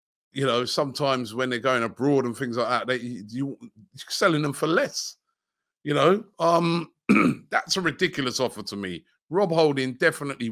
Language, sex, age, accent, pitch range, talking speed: English, male, 30-49, British, 105-135 Hz, 170 wpm